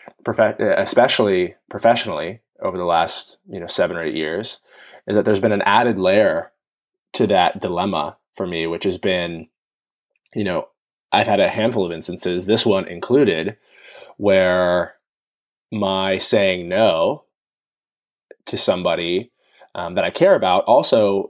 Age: 20-39